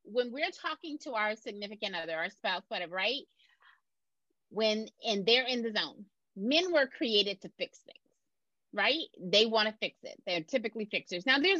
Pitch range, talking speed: 200-265 Hz, 175 wpm